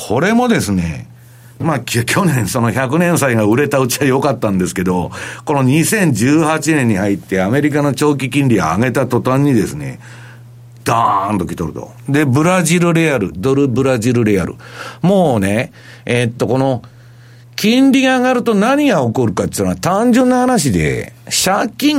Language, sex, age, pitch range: Japanese, male, 50-69, 115-180 Hz